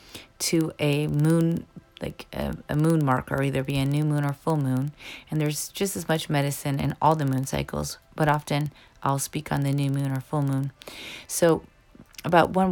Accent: American